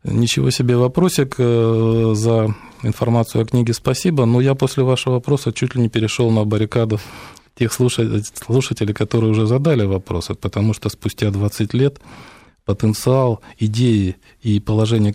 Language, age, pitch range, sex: Russian, 20-39, 105-125 Hz, male